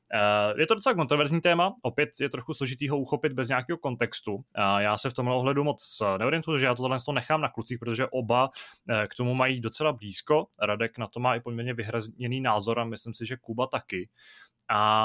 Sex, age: male, 20-39